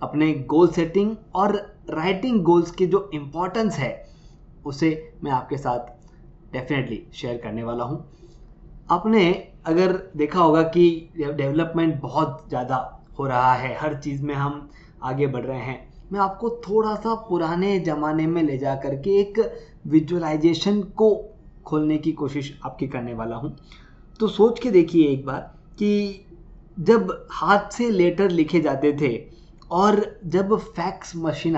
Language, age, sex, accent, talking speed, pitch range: Hindi, 20-39, male, native, 145 wpm, 150-200 Hz